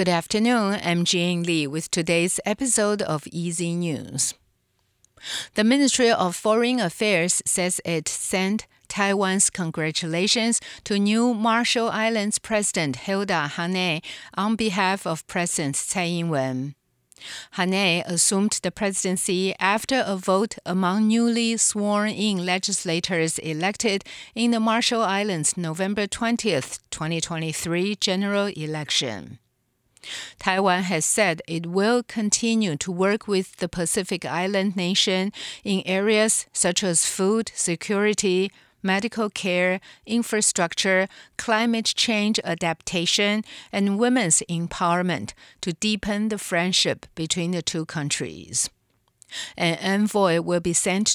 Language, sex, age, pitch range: English, female, 50-69, 170-210 Hz